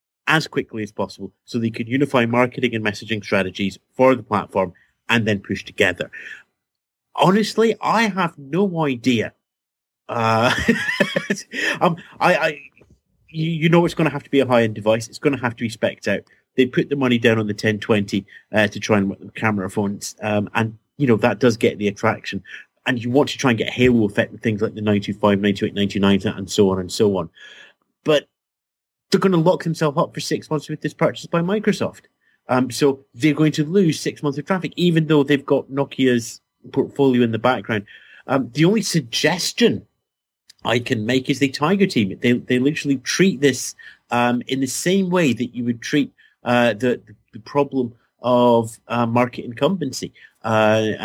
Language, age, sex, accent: English, 30-49, male, British